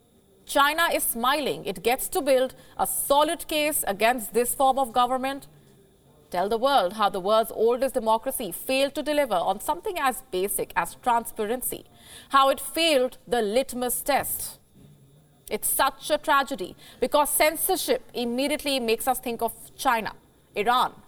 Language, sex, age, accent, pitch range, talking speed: English, female, 30-49, Indian, 220-275 Hz, 145 wpm